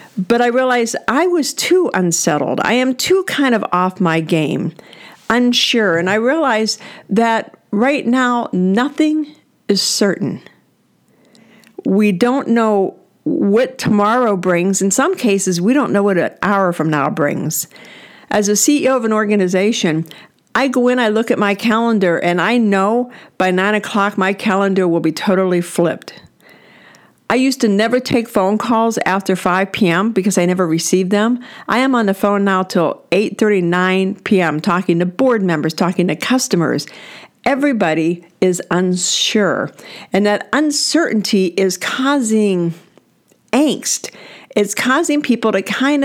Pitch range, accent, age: 185-245 Hz, American, 50-69